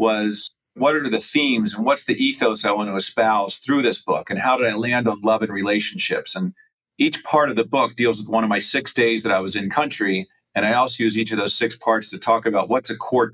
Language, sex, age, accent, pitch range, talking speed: English, male, 40-59, American, 100-115 Hz, 260 wpm